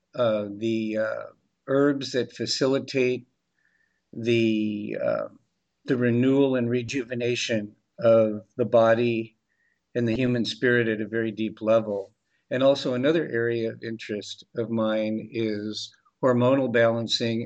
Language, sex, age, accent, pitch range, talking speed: English, male, 50-69, American, 110-125 Hz, 120 wpm